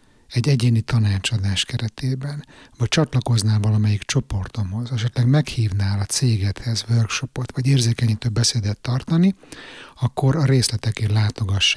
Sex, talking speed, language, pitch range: male, 105 wpm, Hungarian, 105-125 Hz